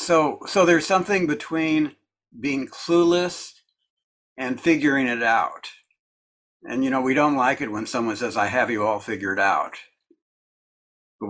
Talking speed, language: 150 wpm, English